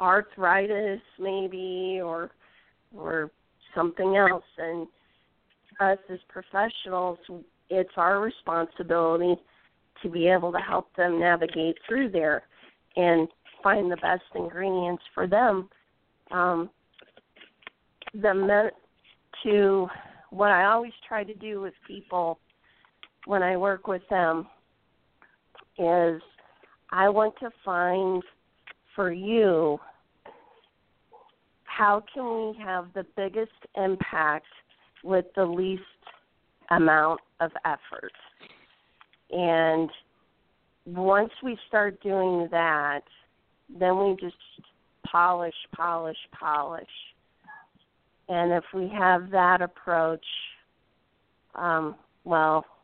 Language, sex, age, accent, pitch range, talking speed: English, female, 40-59, American, 165-195 Hz, 100 wpm